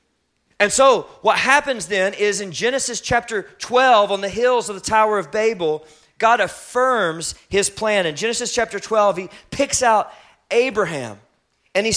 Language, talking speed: English, 160 wpm